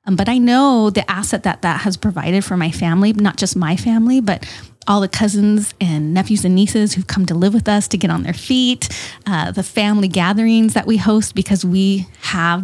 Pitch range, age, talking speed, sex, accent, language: 185-235 Hz, 30-49, 215 wpm, female, American, English